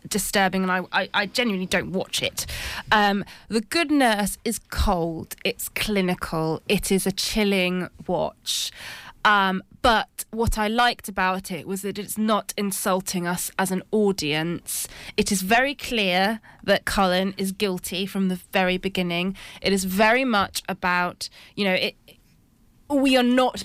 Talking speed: 155 wpm